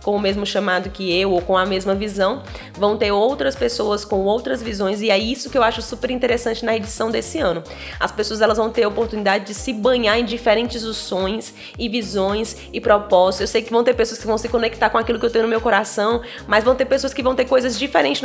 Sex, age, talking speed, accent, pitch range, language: female, 10-29, 245 wpm, Brazilian, 195-230 Hz, Portuguese